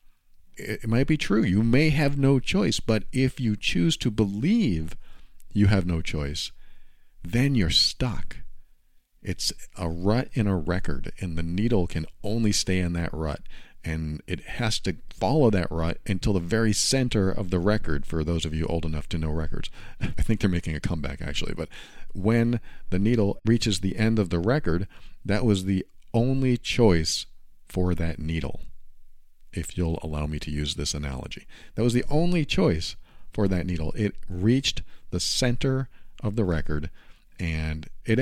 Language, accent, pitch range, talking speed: English, American, 80-110 Hz, 175 wpm